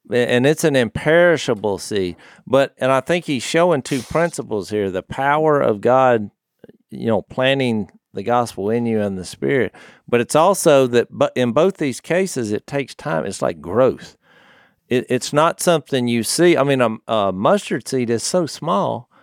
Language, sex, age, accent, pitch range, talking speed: English, male, 50-69, American, 110-150 Hz, 170 wpm